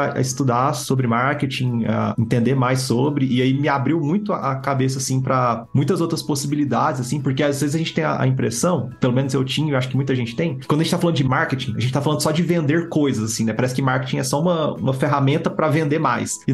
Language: Portuguese